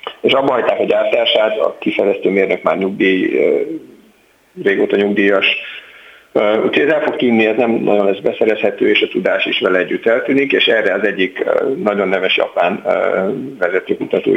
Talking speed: 150 wpm